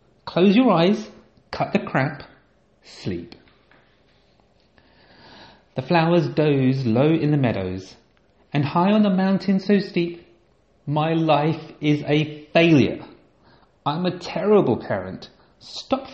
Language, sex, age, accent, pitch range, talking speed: English, male, 30-49, British, 140-180 Hz, 115 wpm